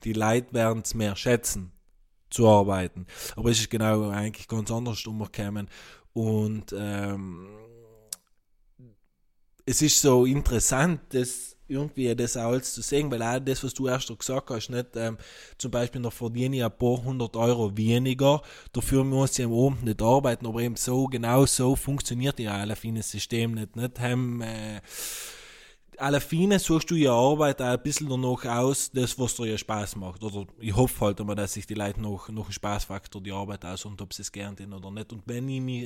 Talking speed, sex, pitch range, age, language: 190 wpm, male, 105-125 Hz, 20-39, German